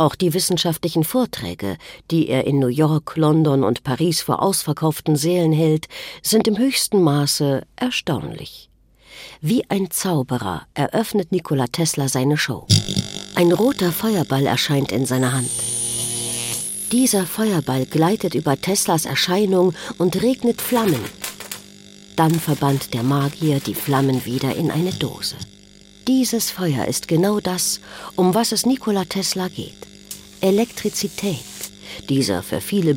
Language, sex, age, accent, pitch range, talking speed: German, female, 50-69, German, 135-195 Hz, 125 wpm